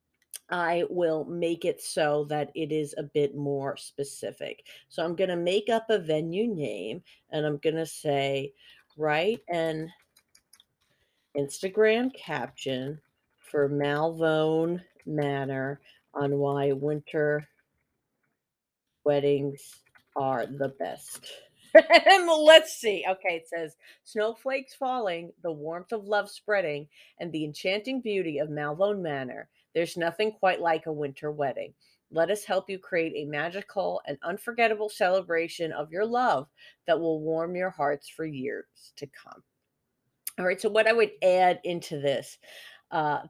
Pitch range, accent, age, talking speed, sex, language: 150-190 Hz, American, 40-59, 135 wpm, female, English